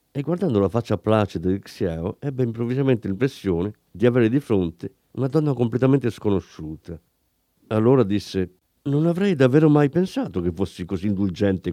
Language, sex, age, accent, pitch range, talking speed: Italian, male, 50-69, native, 95-145 Hz, 150 wpm